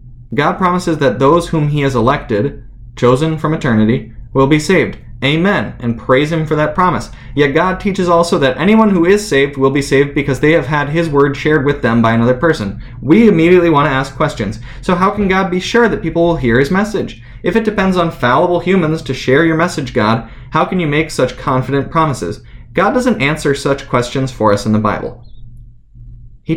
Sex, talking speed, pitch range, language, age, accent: male, 210 wpm, 120-155 Hz, English, 20-39, American